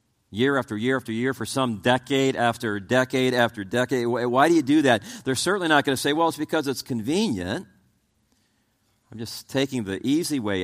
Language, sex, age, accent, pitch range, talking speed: English, male, 50-69, American, 115-145 Hz, 190 wpm